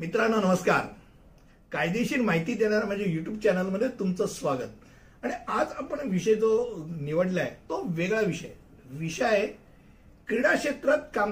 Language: Hindi